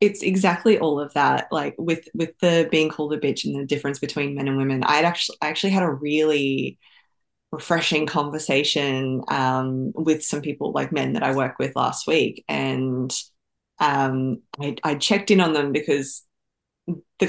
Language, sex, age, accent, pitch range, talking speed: English, female, 20-39, Australian, 145-190 Hz, 175 wpm